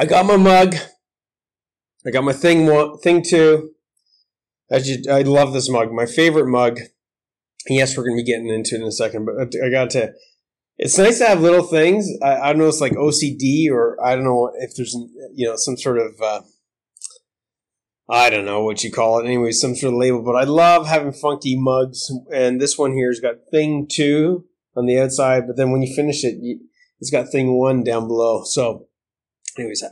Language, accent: English, American